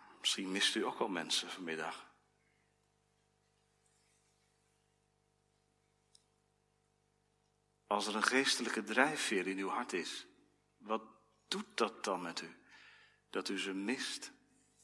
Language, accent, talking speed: Dutch, Dutch, 105 wpm